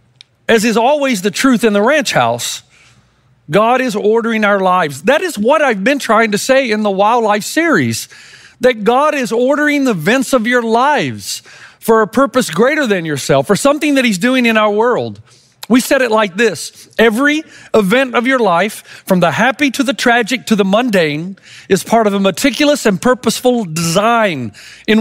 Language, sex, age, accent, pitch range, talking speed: English, male, 40-59, American, 200-260 Hz, 185 wpm